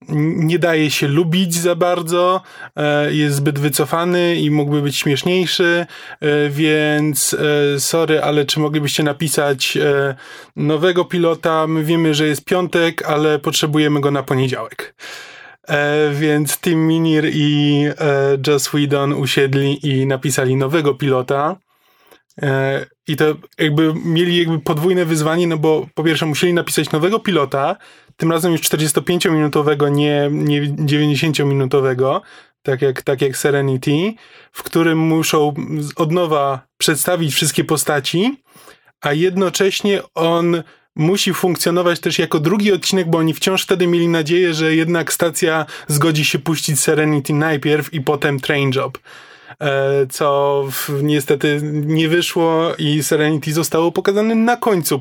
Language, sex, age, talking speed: Polish, male, 20-39, 130 wpm